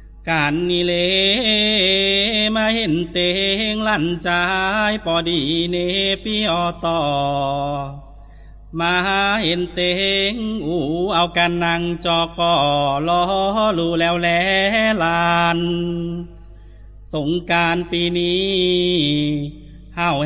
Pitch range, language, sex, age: 160-190 Hz, Thai, male, 30-49